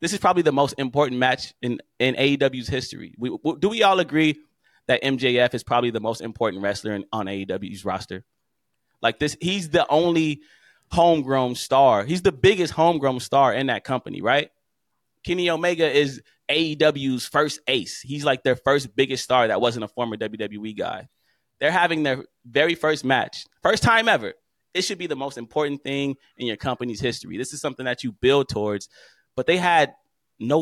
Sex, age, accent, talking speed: male, 20-39, American, 180 wpm